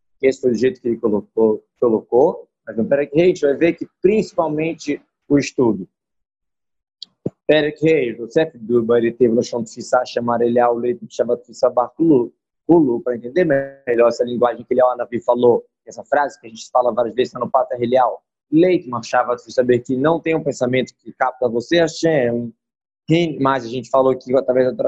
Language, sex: Portuguese, male